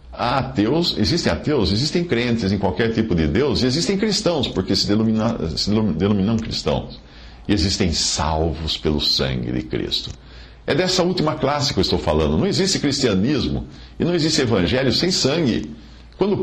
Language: English